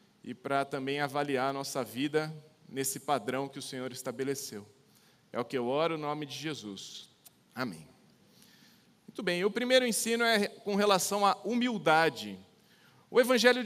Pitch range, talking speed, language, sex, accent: 160-210 Hz, 160 wpm, Portuguese, male, Brazilian